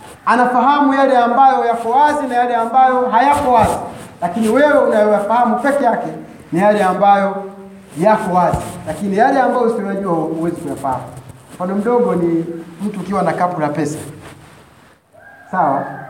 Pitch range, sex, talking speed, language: 170-240 Hz, male, 125 wpm, Swahili